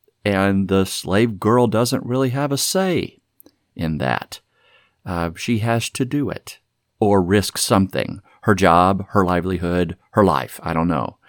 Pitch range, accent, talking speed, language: 90-120 Hz, American, 155 wpm, English